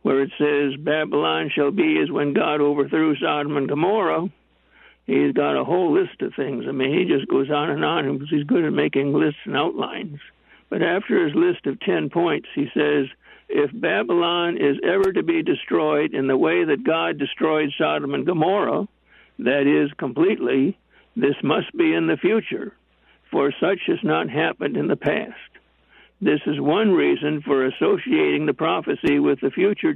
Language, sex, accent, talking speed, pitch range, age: English, male, American, 180 wpm, 140-225 Hz, 60-79